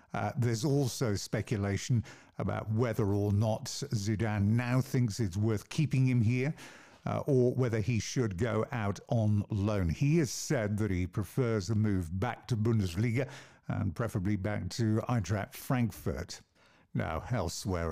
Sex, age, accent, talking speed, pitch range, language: male, 50-69, British, 145 wpm, 100-120 Hz, English